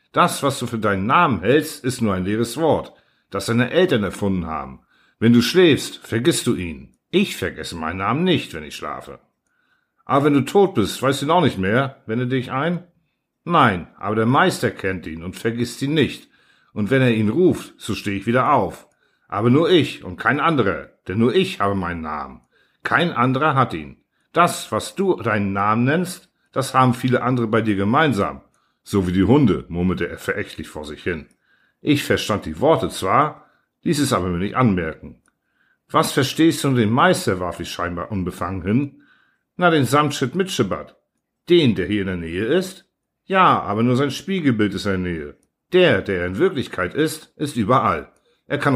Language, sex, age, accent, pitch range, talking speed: German, male, 50-69, German, 100-150 Hz, 190 wpm